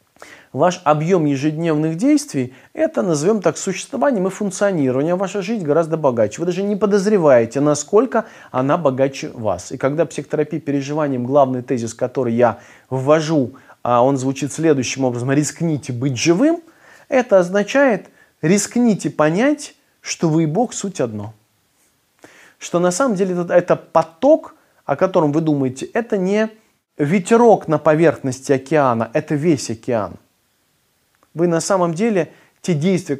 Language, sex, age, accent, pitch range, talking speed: Russian, male, 20-39, native, 135-195 Hz, 135 wpm